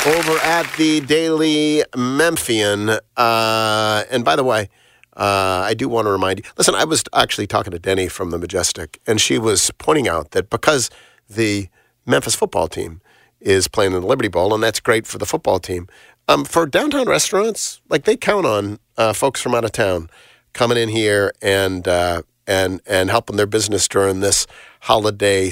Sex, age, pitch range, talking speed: male, 40-59, 105-155 Hz, 180 wpm